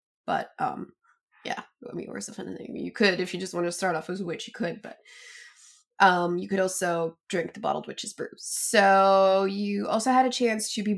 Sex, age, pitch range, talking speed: female, 20-39, 185-235 Hz, 200 wpm